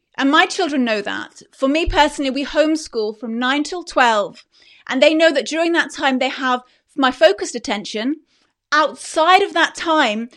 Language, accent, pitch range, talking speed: English, British, 235-300 Hz, 175 wpm